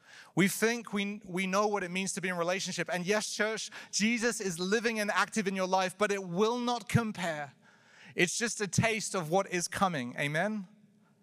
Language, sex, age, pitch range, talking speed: English, male, 30-49, 190-220 Hz, 200 wpm